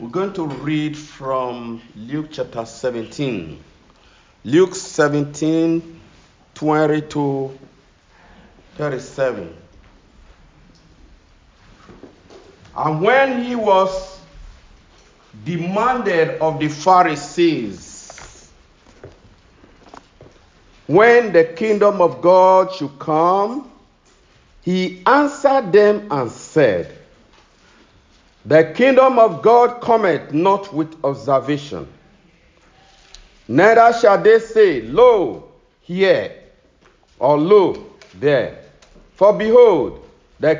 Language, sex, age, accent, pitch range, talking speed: English, male, 50-69, Nigerian, 140-215 Hz, 75 wpm